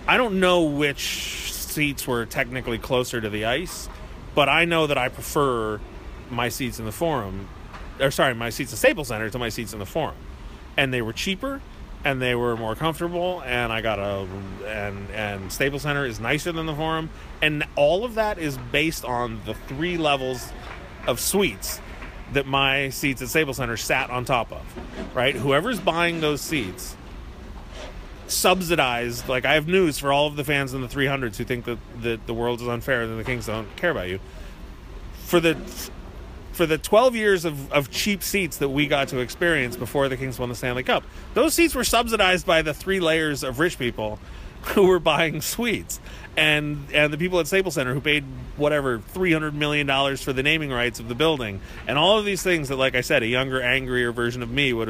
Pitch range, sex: 115-155 Hz, male